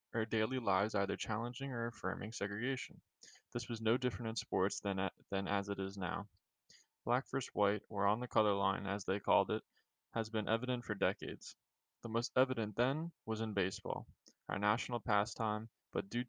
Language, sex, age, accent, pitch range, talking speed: English, male, 20-39, American, 100-120 Hz, 180 wpm